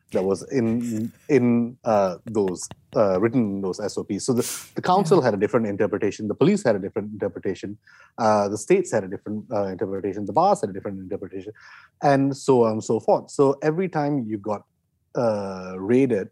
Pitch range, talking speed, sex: 100-135 Hz, 190 wpm, male